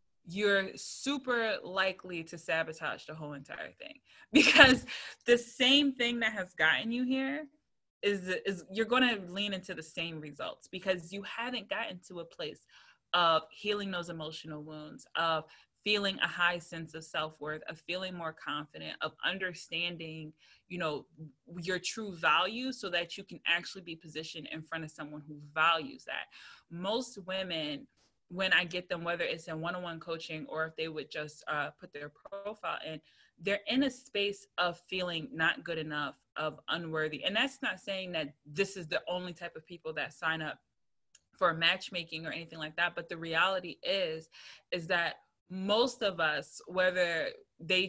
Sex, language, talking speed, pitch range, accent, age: female, English, 170 wpm, 160-195 Hz, American, 20-39